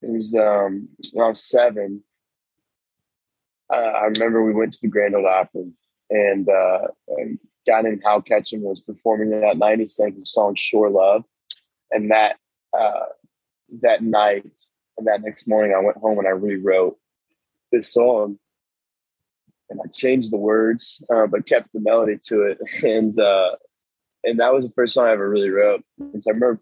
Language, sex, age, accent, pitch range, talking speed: English, male, 20-39, American, 100-110 Hz, 165 wpm